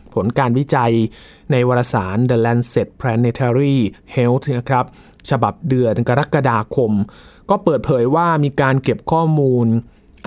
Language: Thai